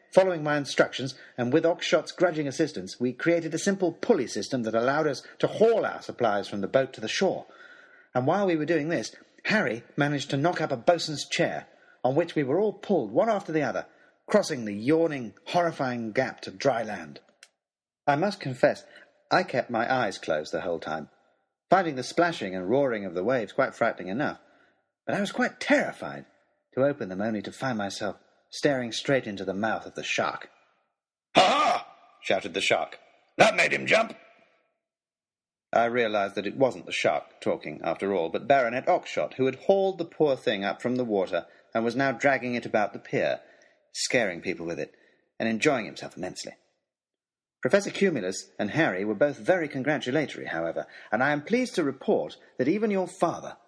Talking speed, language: 185 wpm, English